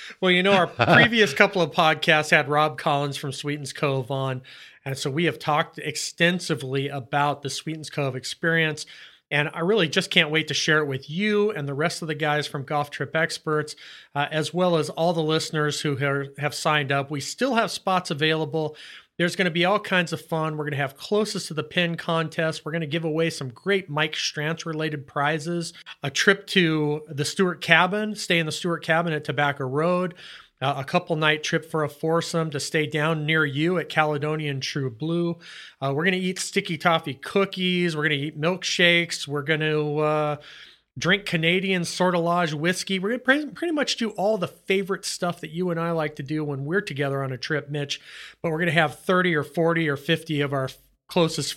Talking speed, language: 210 wpm, English